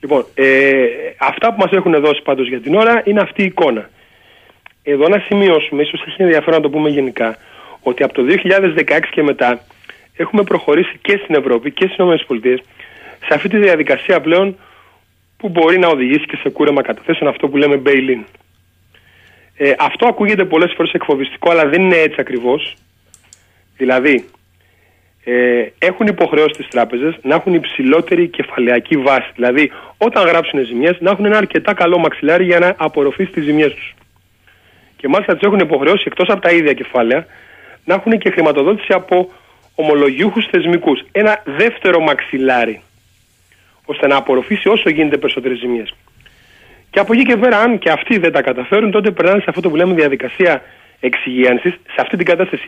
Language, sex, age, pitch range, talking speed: Greek, male, 40-59, 130-185 Hz, 165 wpm